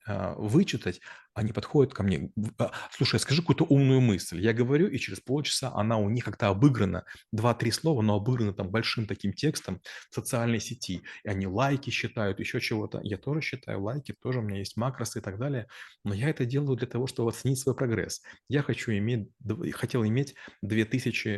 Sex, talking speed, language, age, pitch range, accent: male, 180 wpm, Russian, 30-49, 105-130 Hz, native